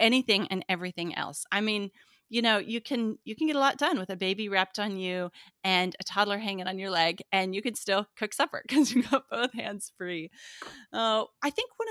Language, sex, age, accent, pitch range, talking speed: English, female, 30-49, American, 175-220 Hz, 225 wpm